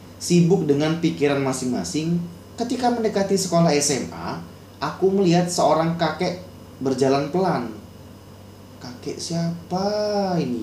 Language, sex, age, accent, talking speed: Indonesian, male, 30-49, native, 95 wpm